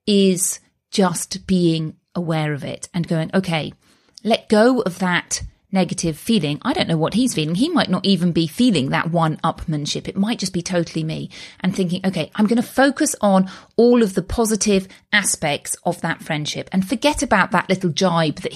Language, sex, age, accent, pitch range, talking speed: English, female, 30-49, British, 170-220 Hz, 190 wpm